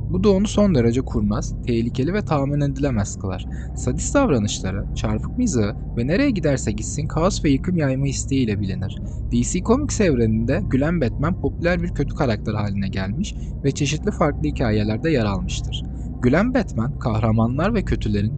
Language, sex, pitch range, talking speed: Turkish, male, 110-155 Hz, 155 wpm